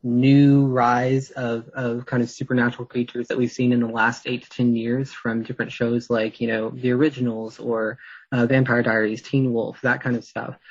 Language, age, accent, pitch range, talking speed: English, 20-39, American, 115-130 Hz, 200 wpm